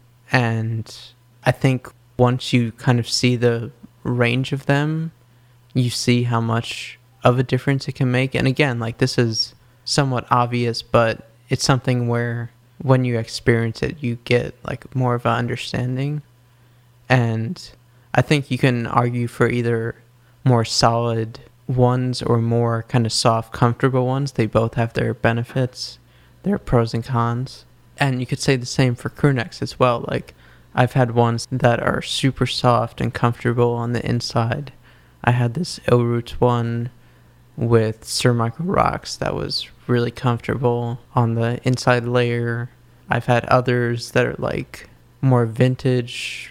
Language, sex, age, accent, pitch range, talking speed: English, male, 20-39, American, 115-130 Hz, 155 wpm